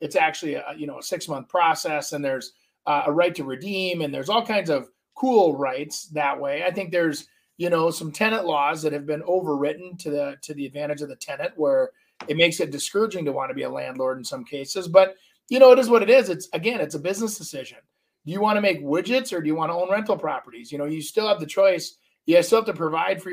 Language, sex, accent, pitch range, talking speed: English, male, American, 155-220 Hz, 255 wpm